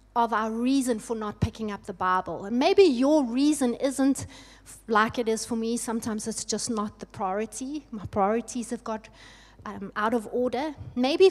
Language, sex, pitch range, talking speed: English, female, 210-265 Hz, 180 wpm